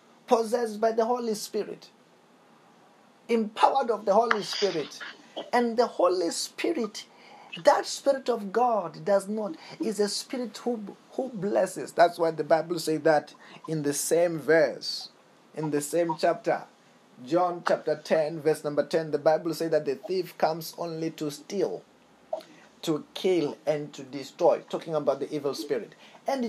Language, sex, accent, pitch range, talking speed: English, male, South African, 155-230 Hz, 150 wpm